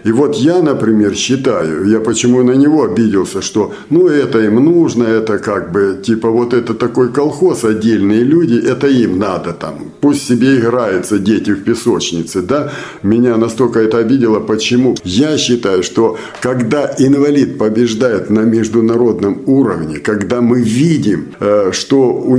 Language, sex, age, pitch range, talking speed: Russian, male, 60-79, 115-145 Hz, 145 wpm